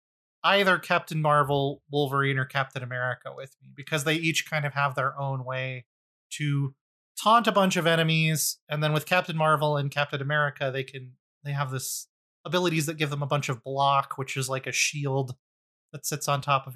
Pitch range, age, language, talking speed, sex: 135-170 Hz, 30-49, English, 195 wpm, male